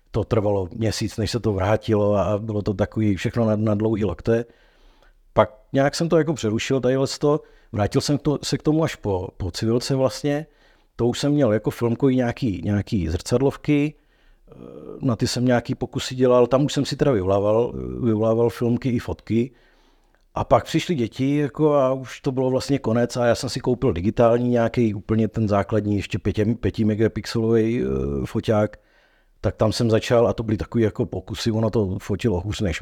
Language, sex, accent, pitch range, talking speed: Czech, male, native, 105-130 Hz, 185 wpm